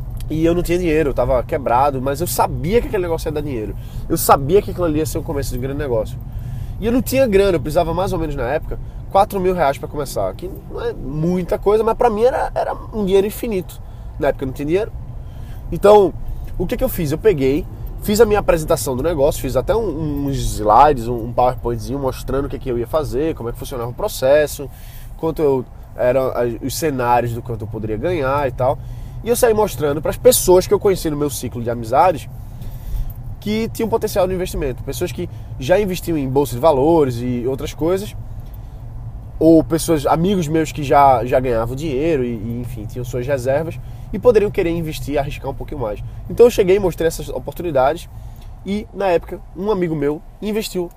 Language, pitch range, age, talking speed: Portuguese, 120-175 Hz, 20-39, 215 wpm